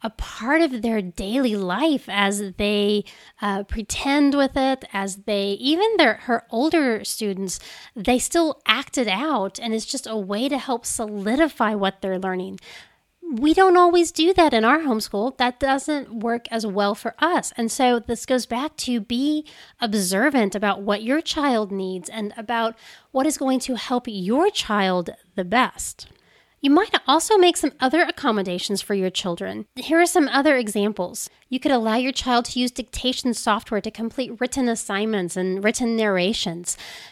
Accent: American